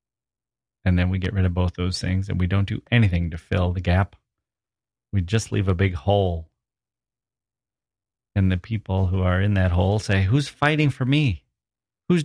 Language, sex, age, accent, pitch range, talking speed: English, male, 40-59, American, 90-105 Hz, 185 wpm